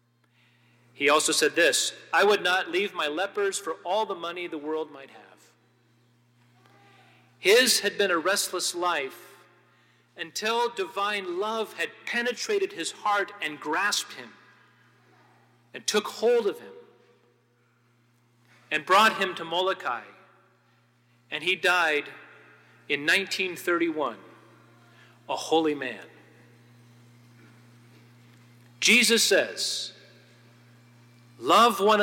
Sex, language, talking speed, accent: male, English, 105 wpm, American